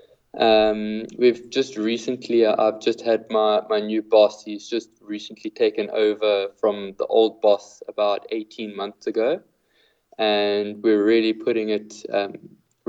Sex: male